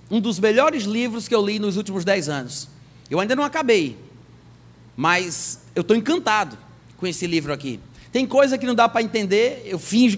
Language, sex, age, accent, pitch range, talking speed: Portuguese, male, 30-49, Brazilian, 160-235 Hz, 190 wpm